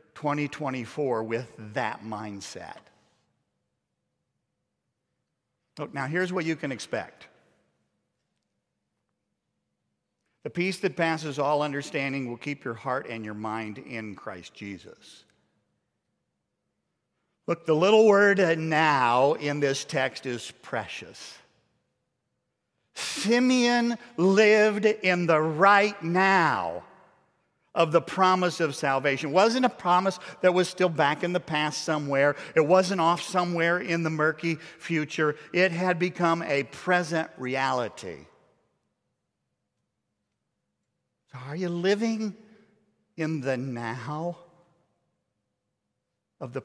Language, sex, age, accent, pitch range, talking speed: English, male, 50-69, American, 135-180 Hz, 110 wpm